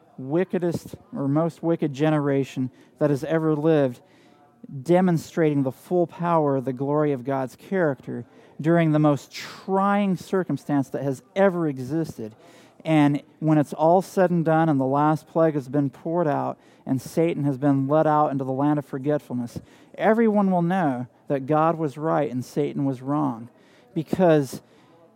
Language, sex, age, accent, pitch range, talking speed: English, male, 40-59, American, 140-165 Hz, 155 wpm